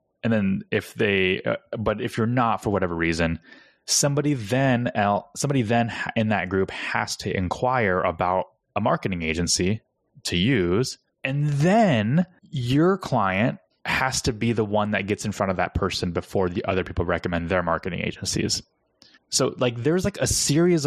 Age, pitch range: 20-39, 95-125 Hz